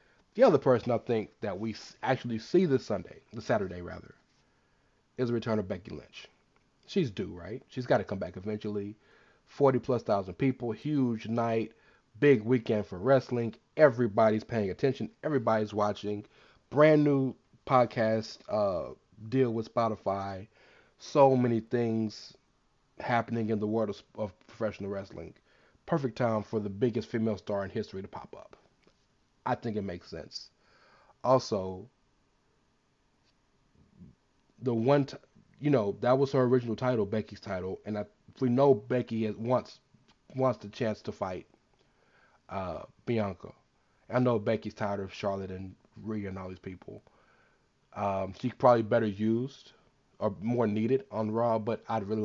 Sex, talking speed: male, 145 wpm